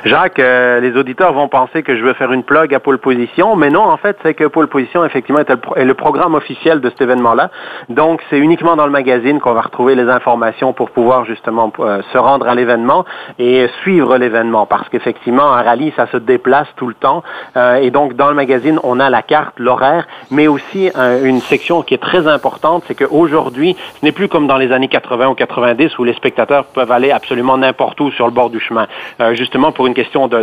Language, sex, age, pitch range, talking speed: French, male, 40-59, 120-145 Hz, 215 wpm